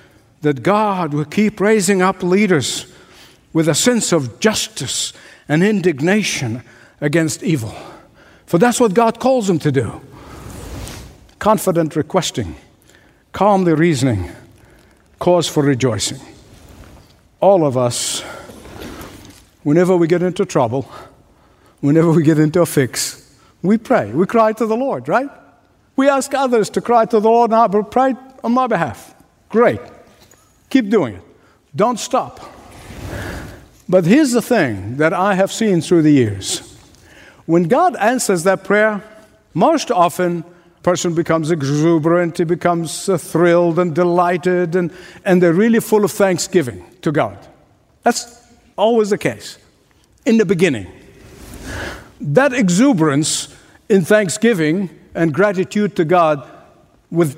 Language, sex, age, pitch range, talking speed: English, male, 60-79, 155-215 Hz, 130 wpm